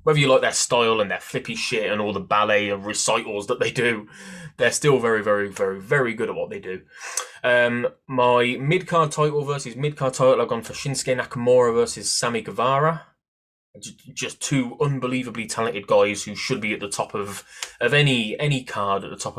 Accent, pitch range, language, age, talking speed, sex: British, 105-145 Hz, English, 20-39, 195 wpm, male